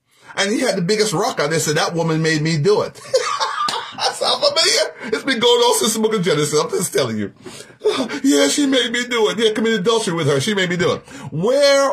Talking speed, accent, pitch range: 240 wpm, American, 150-235 Hz